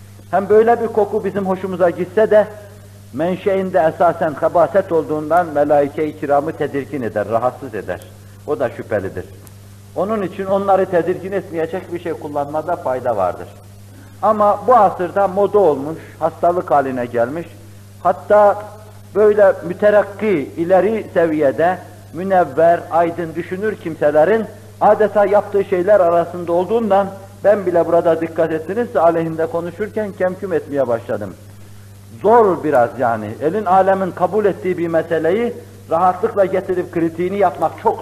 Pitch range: 125-200 Hz